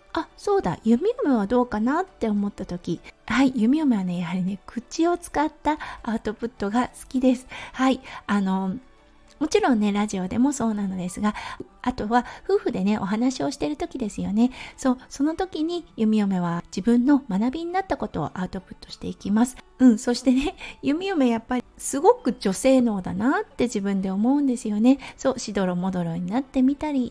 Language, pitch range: Japanese, 200-270 Hz